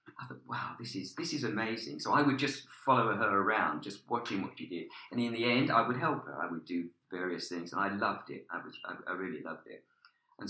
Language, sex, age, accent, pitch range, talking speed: English, male, 40-59, British, 100-135 Hz, 250 wpm